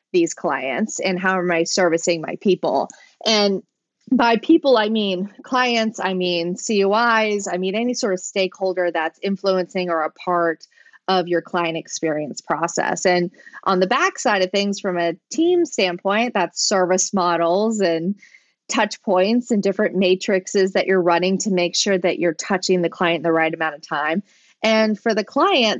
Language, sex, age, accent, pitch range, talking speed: English, female, 20-39, American, 180-225 Hz, 170 wpm